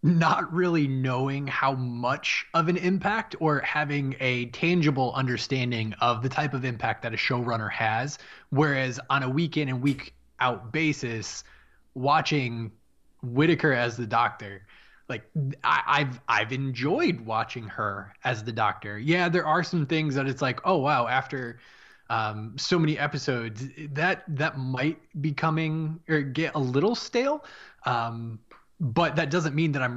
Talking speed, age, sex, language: 155 wpm, 20-39, male, English